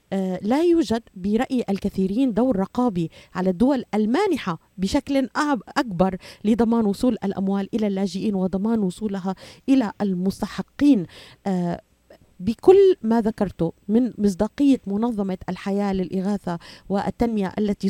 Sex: female